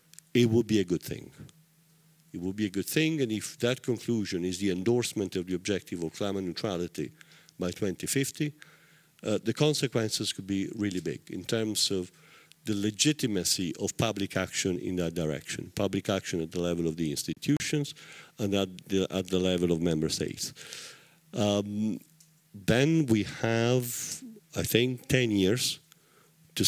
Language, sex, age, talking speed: English, male, 50-69, 155 wpm